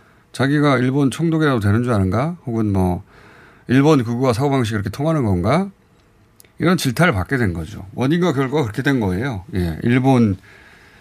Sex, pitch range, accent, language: male, 100-150 Hz, native, Korean